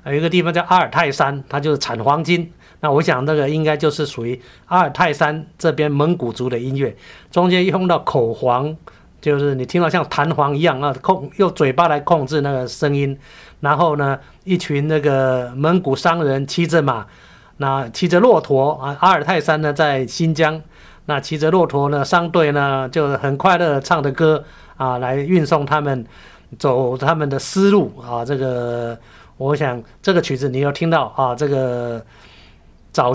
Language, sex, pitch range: Chinese, male, 130-165 Hz